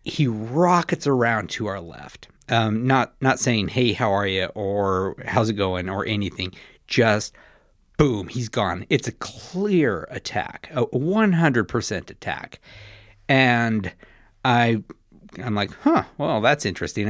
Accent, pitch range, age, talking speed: American, 100-125 Hz, 50-69, 145 wpm